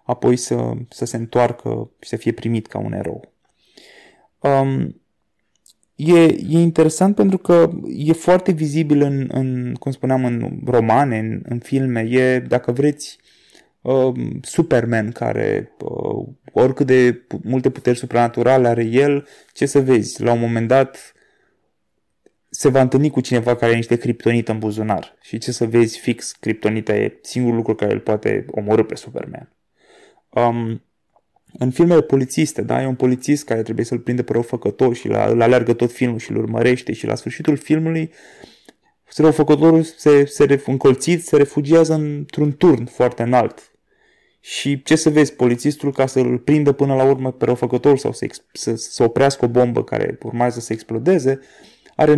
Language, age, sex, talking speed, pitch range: Romanian, 20-39, male, 160 wpm, 120-150 Hz